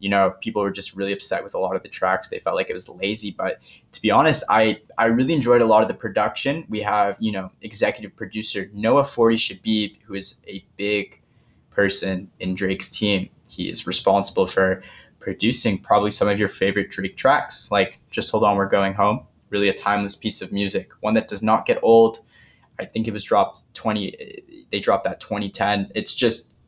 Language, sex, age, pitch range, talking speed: English, male, 10-29, 100-115 Hz, 205 wpm